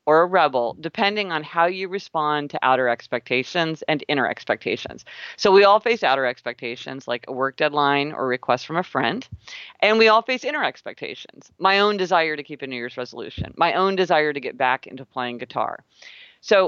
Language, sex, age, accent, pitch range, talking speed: English, female, 40-59, American, 135-210 Hz, 200 wpm